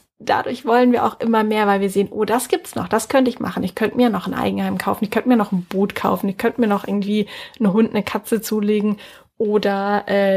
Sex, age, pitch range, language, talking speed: female, 10-29, 205-235 Hz, German, 250 wpm